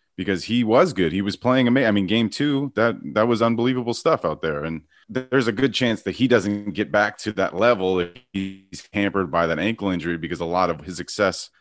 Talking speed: 240 wpm